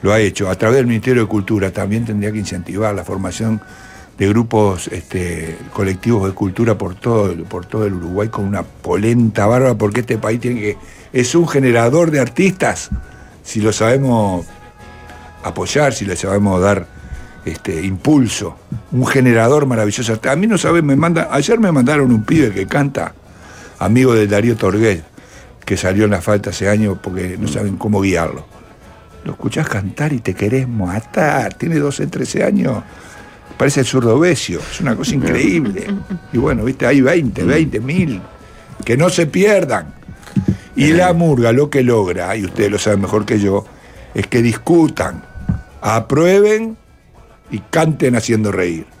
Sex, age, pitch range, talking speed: male, 60-79, 95-130 Hz, 165 wpm